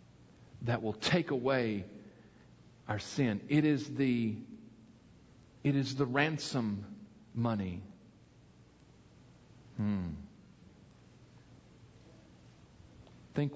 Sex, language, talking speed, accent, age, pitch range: male, English, 70 wpm, American, 50-69, 105-150 Hz